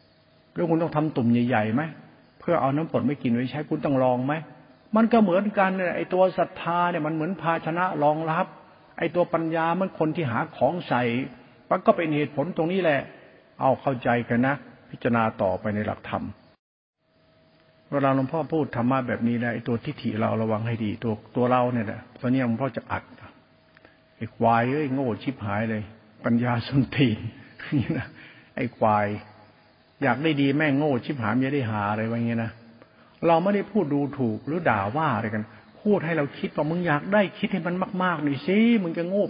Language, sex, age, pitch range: Thai, male, 60-79, 125-170 Hz